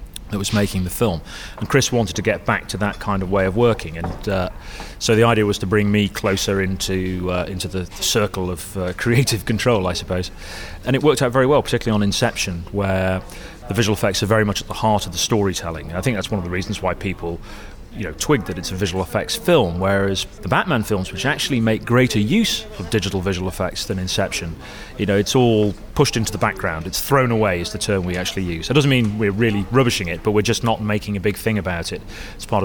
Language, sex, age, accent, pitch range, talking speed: English, male, 30-49, British, 95-110 Hz, 240 wpm